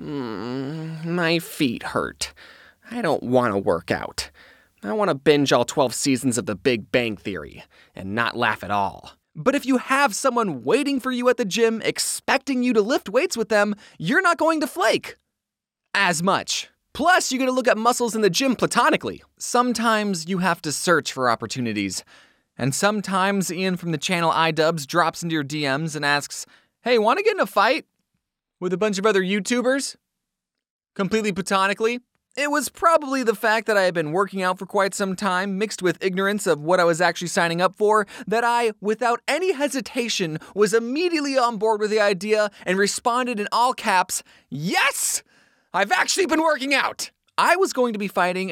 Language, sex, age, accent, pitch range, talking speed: English, male, 20-39, American, 170-245 Hz, 185 wpm